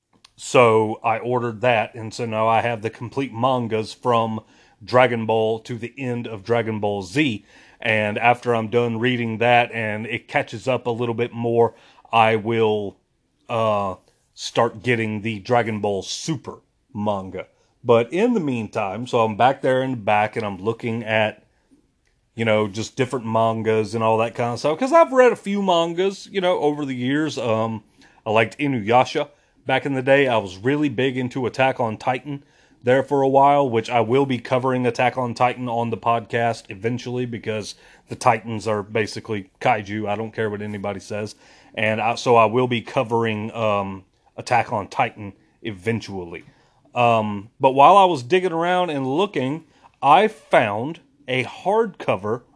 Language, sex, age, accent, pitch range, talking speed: English, male, 30-49, American, 110-130 Hz, 170 wpm